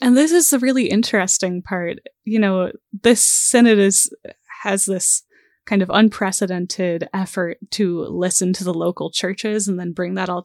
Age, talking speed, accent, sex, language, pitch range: 10-29, 165 wpm, American, female, English, 180-220 Hz